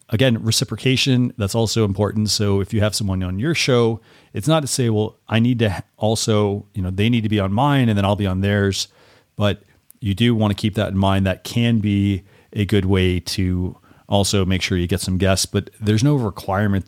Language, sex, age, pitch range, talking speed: English, male, 40-59, 95-120 Hz, 225 wpm